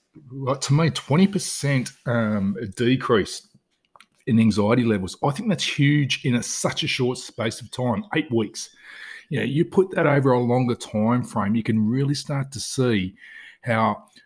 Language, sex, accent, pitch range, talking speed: English, male, Australian, 100-125 Hz, 175 wpm